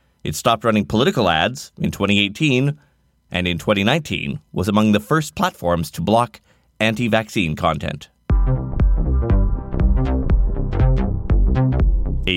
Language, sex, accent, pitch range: English, male, American, 95-135 Hz